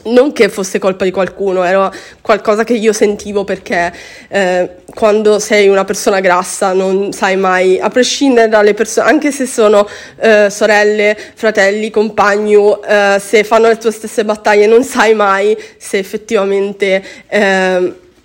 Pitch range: 205-245 Hz